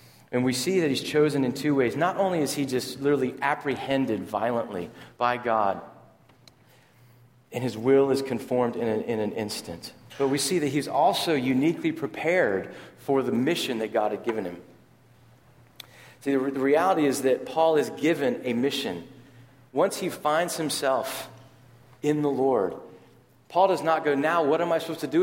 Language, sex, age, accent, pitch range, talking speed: English, male, 40-59, American, 120-150 Hz, 175 wpm